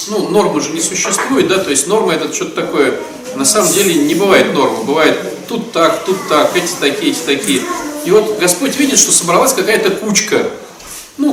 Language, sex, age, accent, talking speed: Russian, male, 40-59, native, 190 wpm